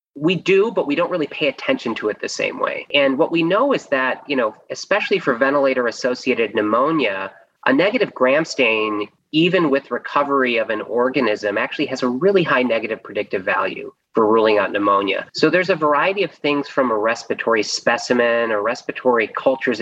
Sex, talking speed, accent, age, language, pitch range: male, 180 wpm, American, 30-49, English, 110-165 Hz